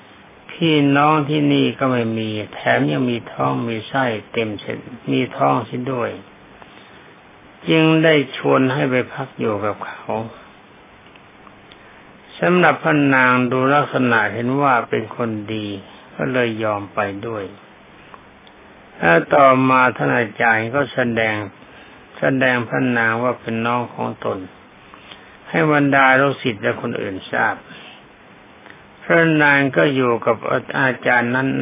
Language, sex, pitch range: Thai, male, 110-135 Hz